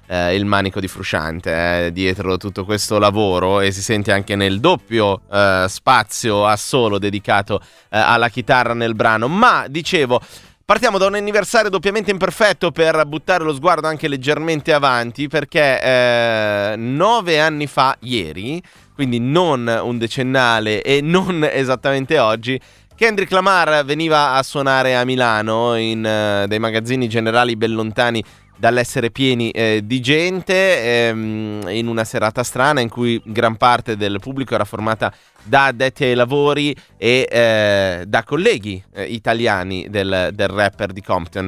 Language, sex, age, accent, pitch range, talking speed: Italian, male, 20-39, native, 105-145 Hz, 150 wpm